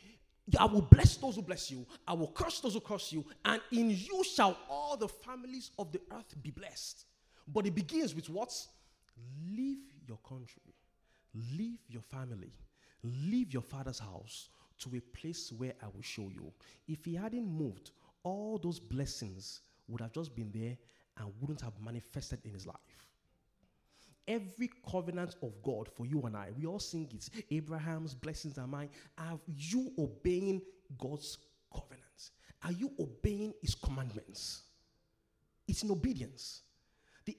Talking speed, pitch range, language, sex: 155 wpm, 125-205 Hz, English, male